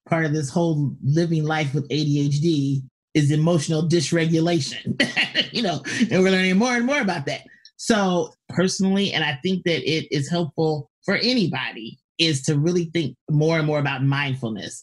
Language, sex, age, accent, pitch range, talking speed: English, male, 30-49, American, 135-165 Hz, 165 wpm